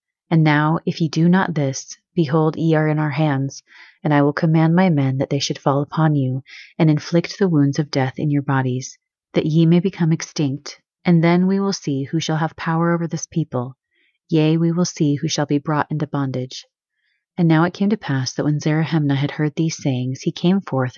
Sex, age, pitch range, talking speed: female, 30-49, 140-170 Hz, 220 wpm